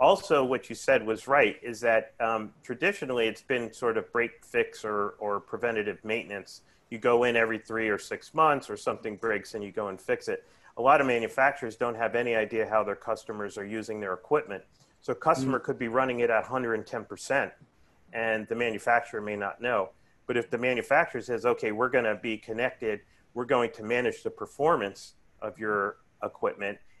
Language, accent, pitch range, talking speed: English, American, 110-130 Hz, 190 wpm